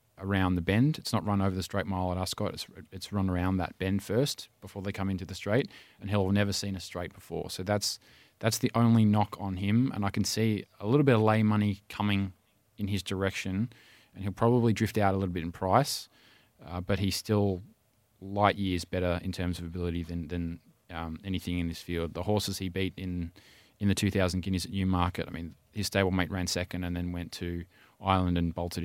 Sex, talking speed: male, 225 wpm